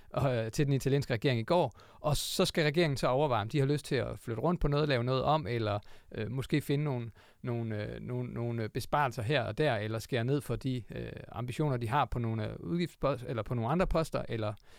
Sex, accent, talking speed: male, native, 230 wpm